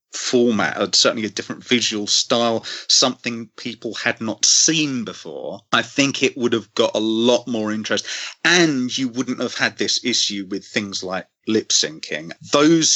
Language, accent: English, British